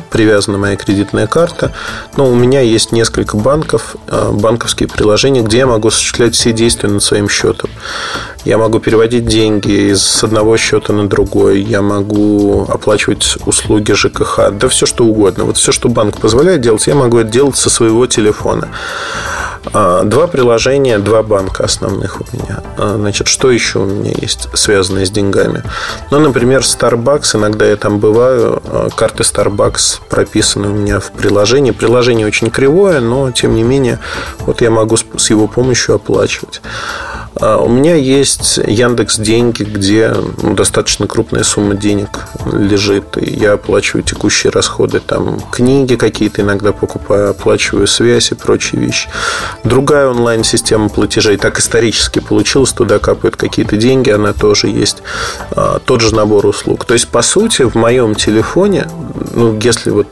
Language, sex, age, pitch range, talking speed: Russian, male, 20-39, 105-125 Hz, 150 wpm